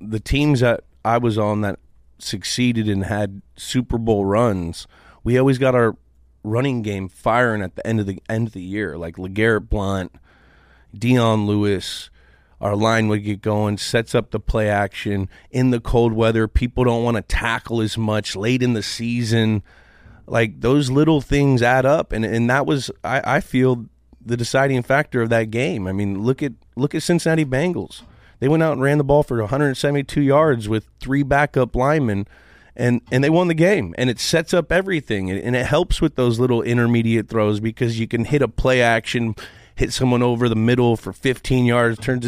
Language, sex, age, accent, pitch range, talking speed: English, male, 30-49, American, 105-130 Hz, 190 wpm